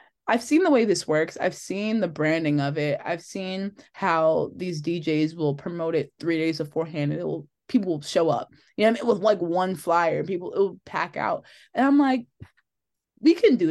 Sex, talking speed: female, 225 wpm